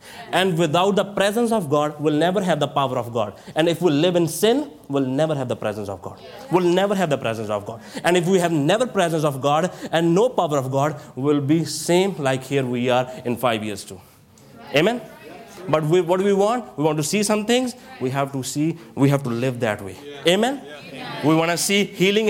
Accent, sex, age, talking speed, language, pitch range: Indian, male, 30-49, 235 wpm, English, 135-185 Hz